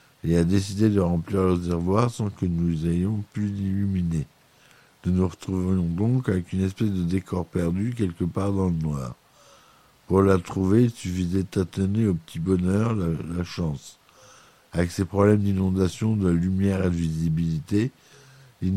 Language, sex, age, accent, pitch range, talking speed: French, male, 60-79, French, 90-105 Hz, 160 wpm